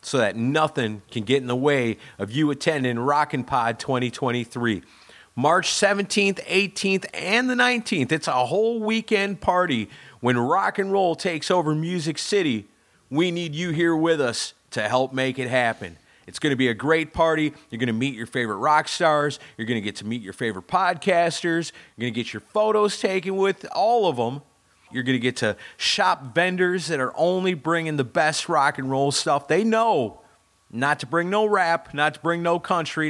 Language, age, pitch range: English, 40-59, 125-180 Hz